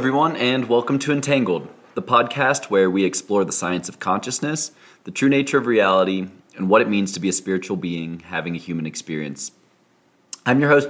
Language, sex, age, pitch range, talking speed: English, male, 30-49, 90-120 Hz, 200 wpm